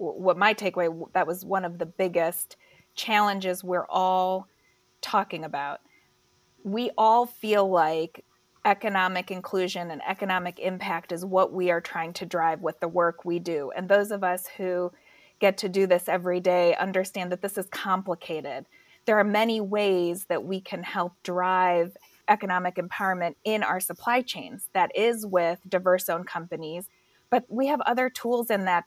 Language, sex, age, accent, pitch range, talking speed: English, female, 30-49, American, 175-205 Hz, 165 wpm